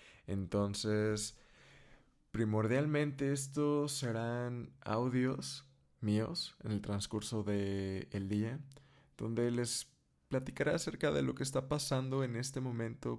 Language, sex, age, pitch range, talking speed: Spanish, male, 20-39, 105-135 Hz, 110 wpm